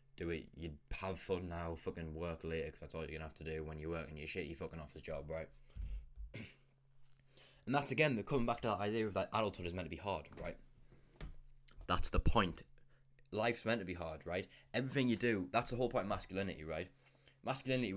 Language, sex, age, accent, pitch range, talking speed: English, male, 10-29, British, 85-130 Hz, 235 wpm